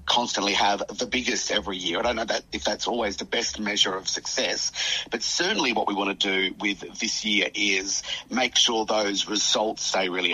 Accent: Australian